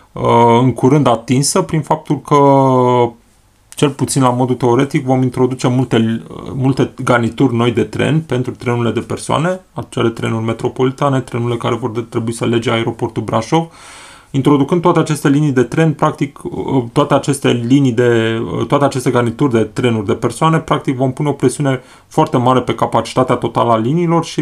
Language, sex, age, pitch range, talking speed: Romanian, male, 30-49, 115-135 Hz, 160 wpm